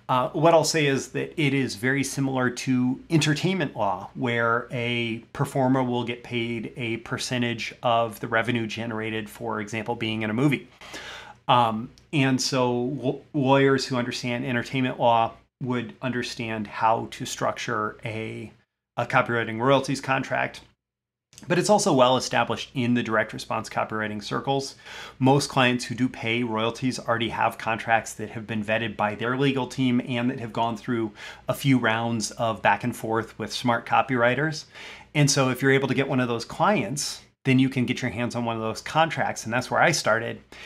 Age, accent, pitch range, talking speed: 30-49, American, 115-135 Hz, 175 wpm